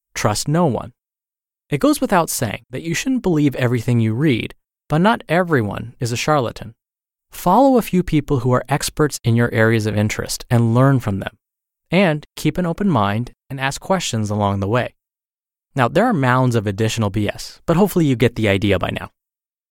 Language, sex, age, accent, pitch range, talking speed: English, male, 20-39, American, 110-155 Hz, 190 wpm